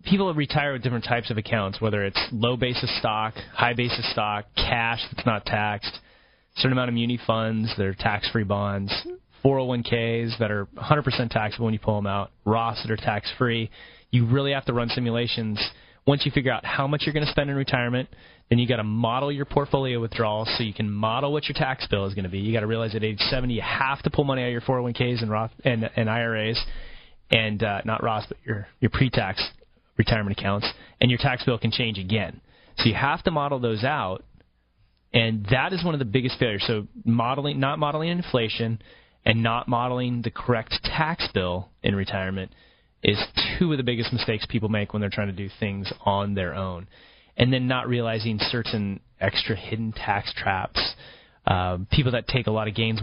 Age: 20-39